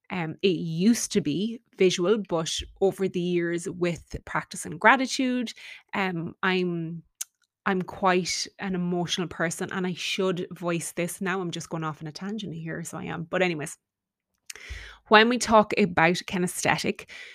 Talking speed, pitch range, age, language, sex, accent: 155 wpm, 165-195 Hz, 20-39, English, female, Irish